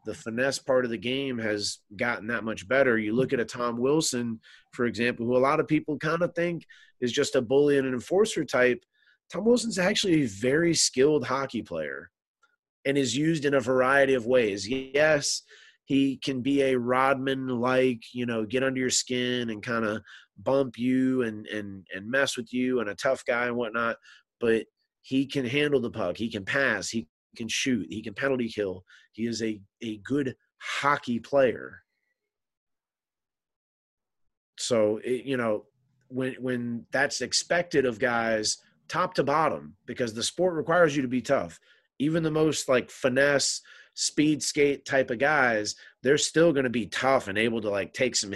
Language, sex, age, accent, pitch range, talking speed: English, male, 30-49, American, 115-140 Hz, 180 wpm